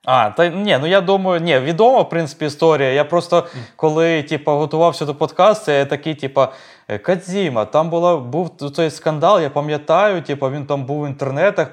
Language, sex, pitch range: Ukrainian, male, 125-160 Hz